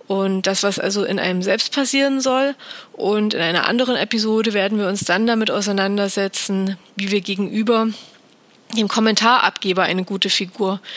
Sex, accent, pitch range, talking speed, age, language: female, German, 195-230 Hz, 155 wpm, 30-49, German